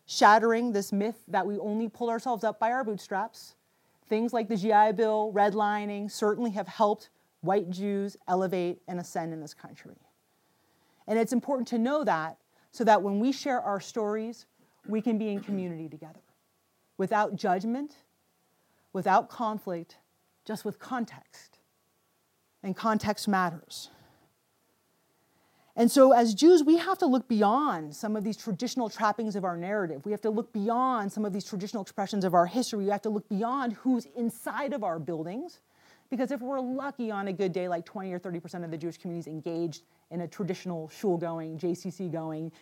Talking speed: 170 wpm